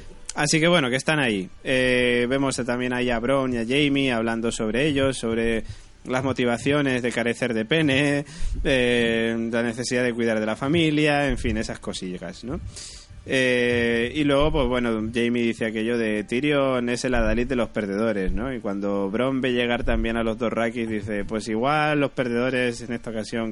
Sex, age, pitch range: male, 20-39, 110-135 Hz